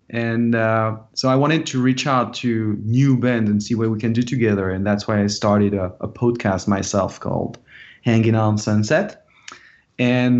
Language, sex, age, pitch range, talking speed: English, male, 30-49, 105-125 Hz, 185 wpm